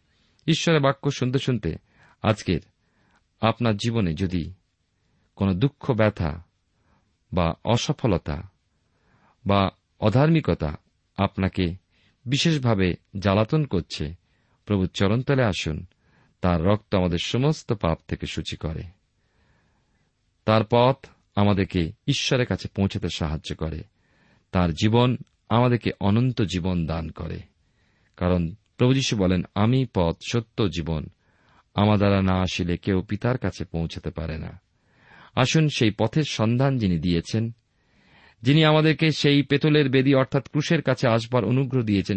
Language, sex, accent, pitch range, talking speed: Bengali, male, native, 90-125 Hz, 80 wpm